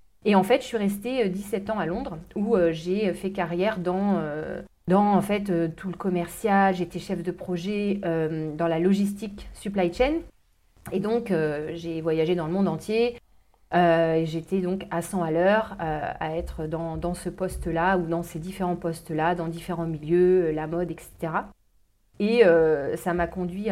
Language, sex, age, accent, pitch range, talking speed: French, female, 30-49, French, 165-200 Hz, 185 wpm